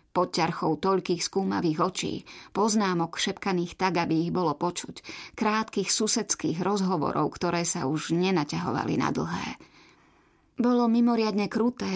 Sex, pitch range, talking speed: female, 185-220 Hz, 120 wpm